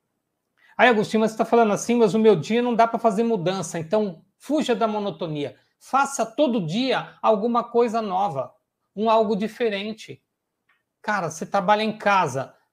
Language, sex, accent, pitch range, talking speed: Portuguese, male, Brazilian, 175-230 Hz, 155 wpm